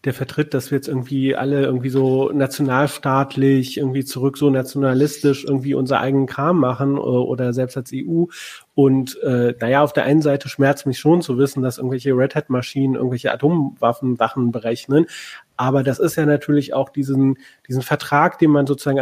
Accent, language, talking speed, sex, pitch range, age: German, German, 175 wpm, male, 130-150 Hz, 30-49